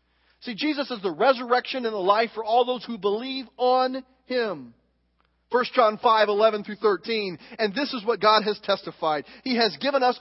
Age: 40-59